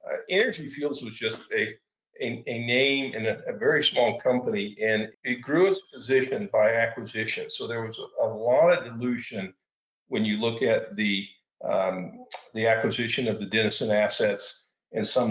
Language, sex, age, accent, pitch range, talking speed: English, male, 50-69, American, 110-150 Hz, 170 wpm